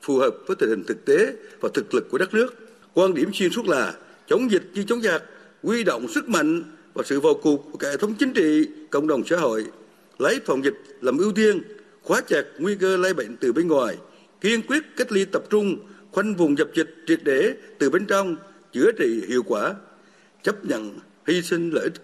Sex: male